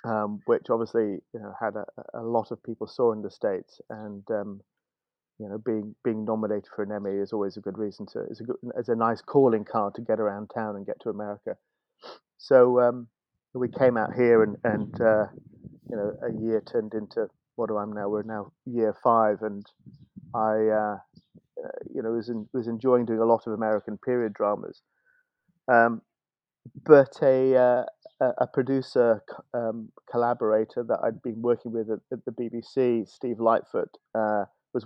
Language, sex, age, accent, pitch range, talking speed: English, male, 30-49, British, 110-125 Hz, 180 wpm